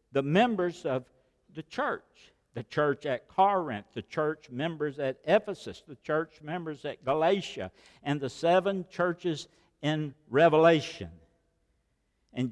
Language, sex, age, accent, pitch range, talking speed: English, male, 60-79, American, 140-180 Hz, 125 wpm